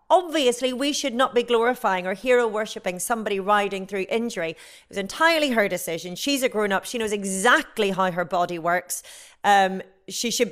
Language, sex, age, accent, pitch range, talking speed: English, female, 40-59, British, 195-280 Hz, 175 wpm